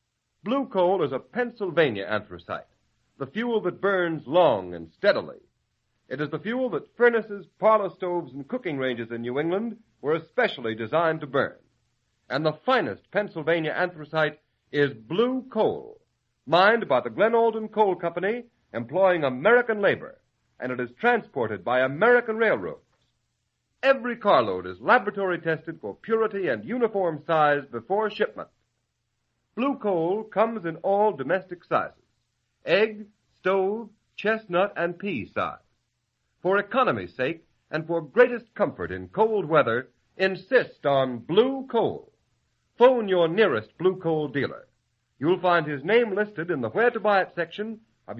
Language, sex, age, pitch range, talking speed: English, male, 50-69, 150-220 Hz, 145 wpm